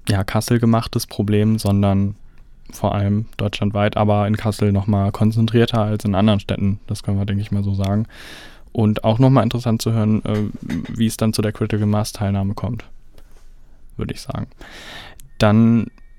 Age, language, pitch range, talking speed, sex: 10-29, German, 105-115 Hz, 165 wpm, male